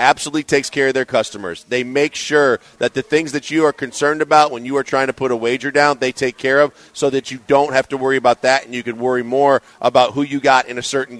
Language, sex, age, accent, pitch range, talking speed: English, male, 40-59, American, 135-155 Hz, 275 wpm